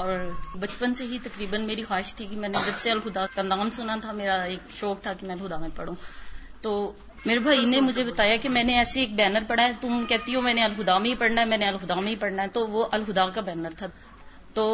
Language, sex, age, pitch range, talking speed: Urdu, female, 30-49, 200-235 Hz, 255 wpm